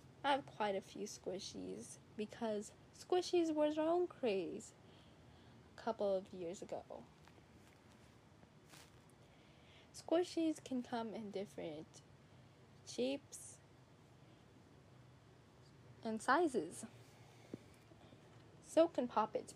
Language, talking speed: English, 85 wpm